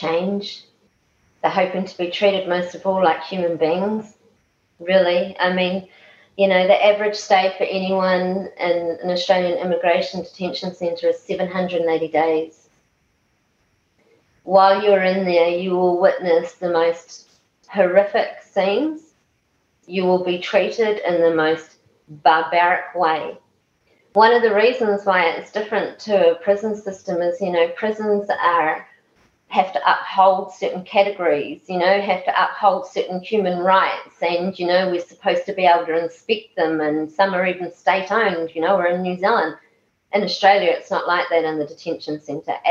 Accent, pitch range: Australian, 170-210 Hz